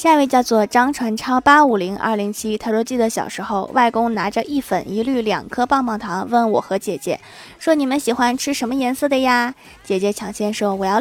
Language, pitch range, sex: Chinese, 210-275 Hz, female